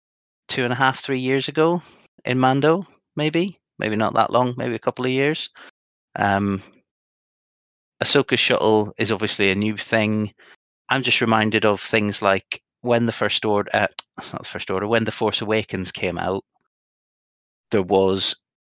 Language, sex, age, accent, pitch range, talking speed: English, male, 30-49, British, 95-110 Hz, 160 wpm